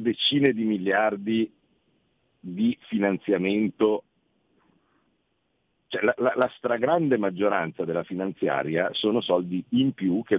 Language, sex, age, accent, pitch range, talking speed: Italian, male, 50-69, native, 95-155 Hz, 100 wpm